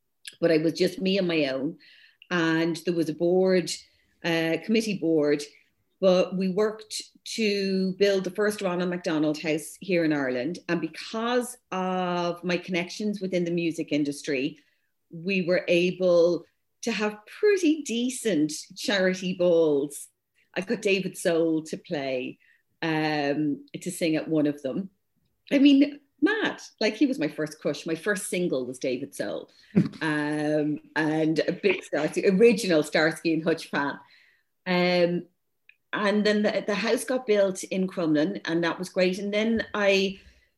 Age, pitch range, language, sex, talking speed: 40-59, 165-205 Hz, English, female, 150 wpm